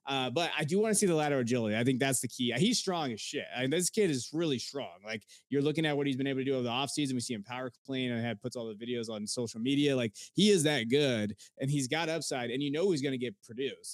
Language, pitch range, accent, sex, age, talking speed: English, 120-160 Hz, American, male, 20-39, 310 wpm